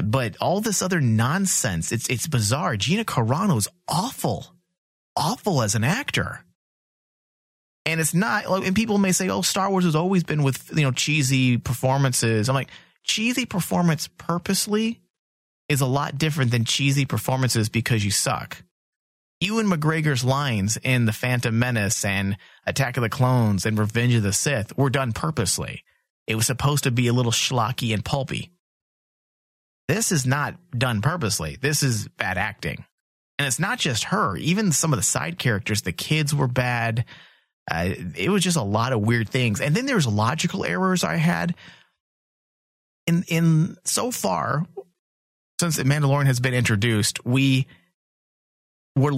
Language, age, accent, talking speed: English, 30-49, American, 160 wpm